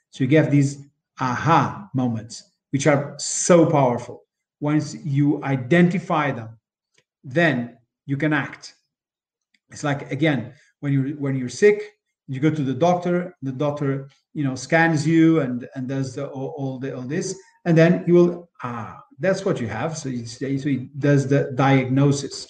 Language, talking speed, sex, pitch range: English, 165 wpm, male, 130-160 Hz